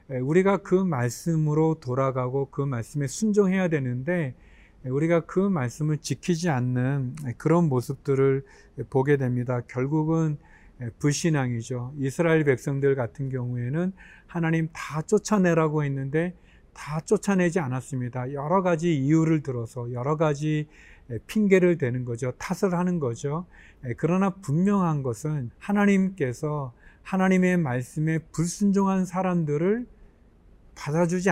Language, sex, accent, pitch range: Korean, male, native, 130-170 Hz